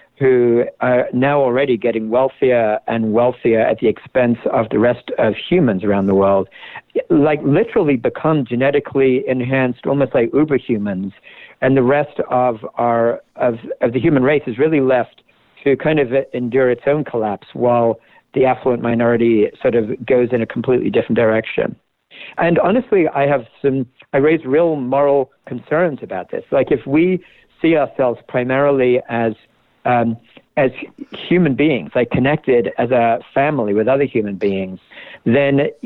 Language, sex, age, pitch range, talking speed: English, male, 50-69, 120-140 Hz, 155 wpm